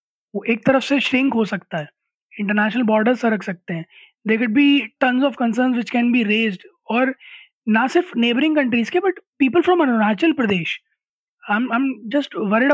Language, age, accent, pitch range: Hindi, 20-39, native, 220-270 Hz